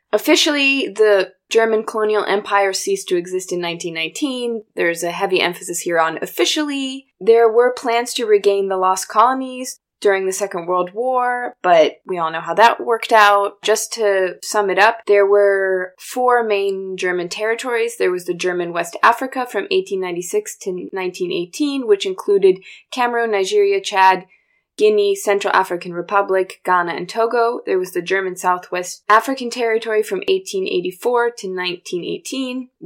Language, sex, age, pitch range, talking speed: English, female, 20-39, 185-260 Hz, 150 wpm